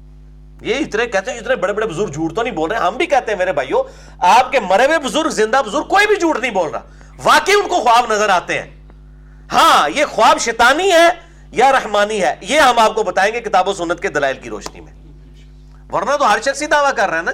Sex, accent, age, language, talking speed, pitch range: male, Indian, 40-59, English, 205 wpm, 175-255 Hz